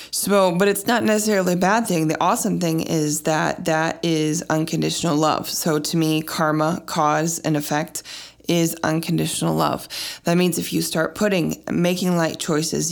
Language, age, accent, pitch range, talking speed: English, 20-39, American, 155-175 Hz, 165 wpm